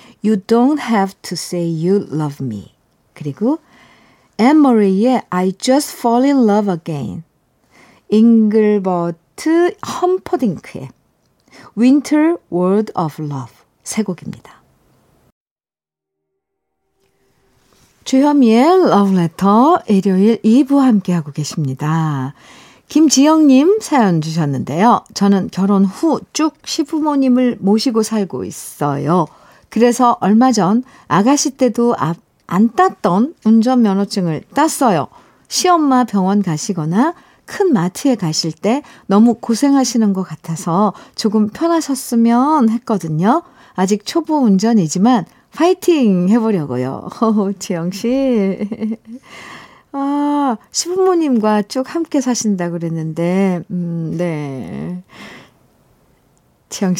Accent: native